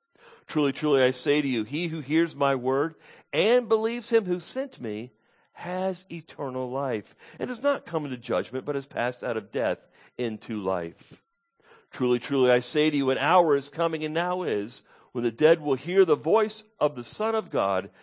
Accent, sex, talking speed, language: American, male, 195 wpm, English